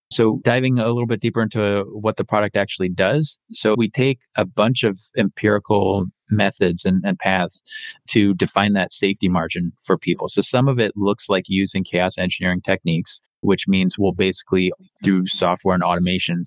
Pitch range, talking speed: 90-105 Hz, 175 wpm